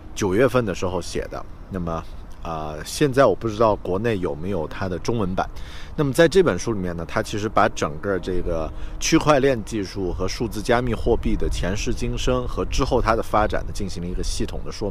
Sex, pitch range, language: male, 85-115 Hz, Chinese